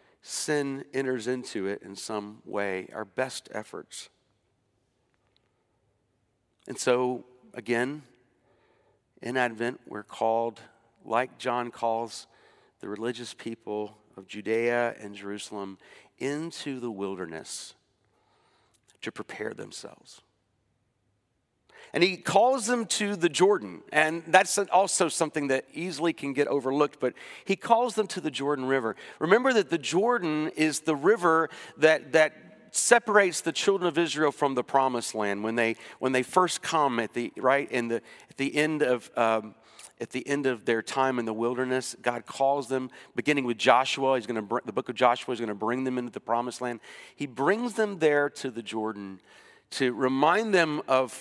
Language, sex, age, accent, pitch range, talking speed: English, male, 50-69, American, 115-155 Hz, 155 wpm